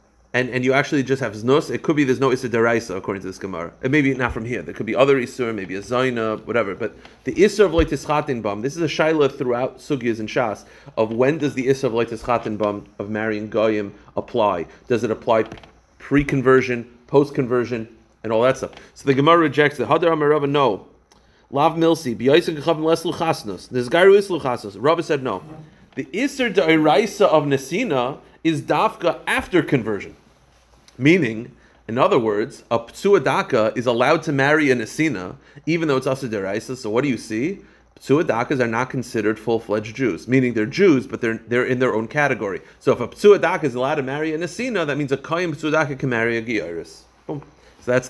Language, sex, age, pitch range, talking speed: English, male, 40-59, 115-150 Hz, 185 wpm